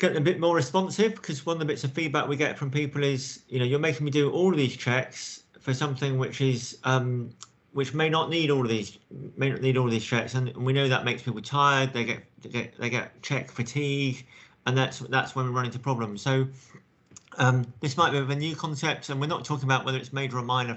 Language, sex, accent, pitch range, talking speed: English, male, British, 125-150 Hz, 250 wpm